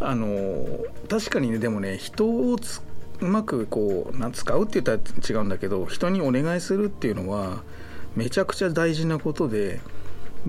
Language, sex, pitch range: Japanese, male, 100-160 Hz